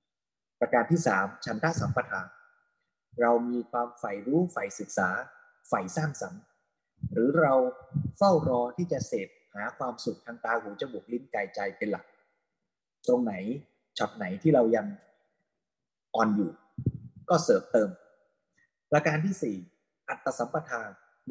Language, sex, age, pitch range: Thai, male, 20-39, 120-175 Hz